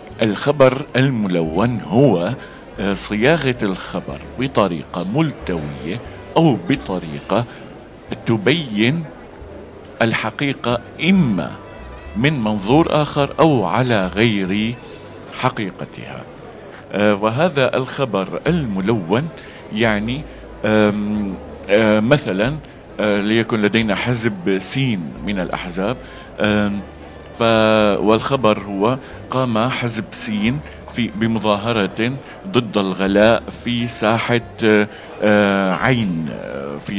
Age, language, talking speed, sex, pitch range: 50-69, Arabic, 70 wpm, male, 100-125 Hz